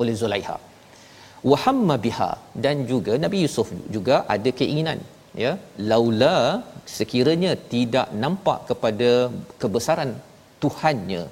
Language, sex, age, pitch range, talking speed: Malayalam, male, 40-59, 115-145 Hz, 95 wpm